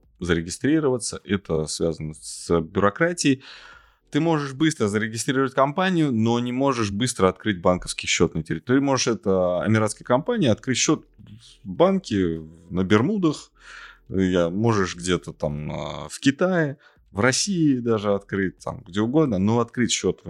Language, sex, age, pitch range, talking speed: Russian, male, 20-39, 90-125 Hz, 135 wpm